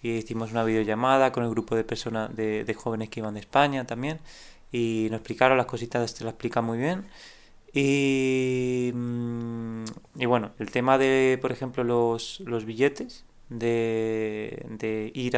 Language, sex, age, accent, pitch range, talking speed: Spanish, male, 20-39, Spanish, 115-130 Hz, 160 wpm